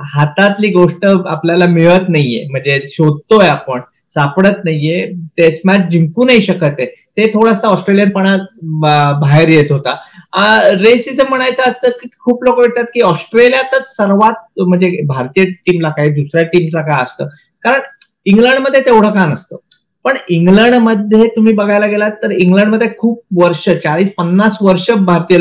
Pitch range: 160-215 Hz